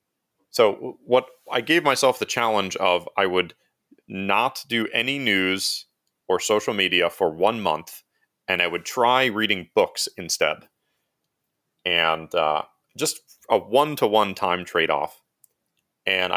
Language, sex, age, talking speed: English, male, 30-49, 130 wpm